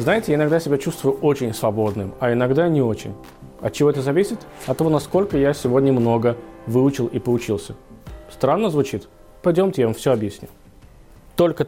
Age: 20-39